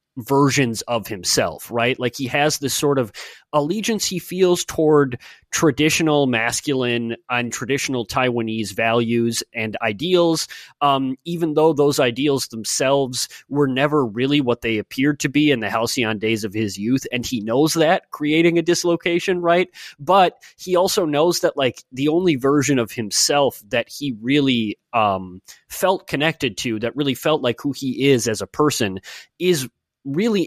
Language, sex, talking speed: English, male, 160 wpm